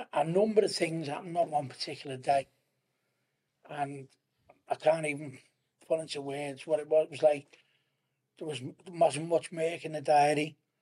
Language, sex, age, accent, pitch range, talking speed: English, male, 60-79, British, 140-160 Hz, 150 wpm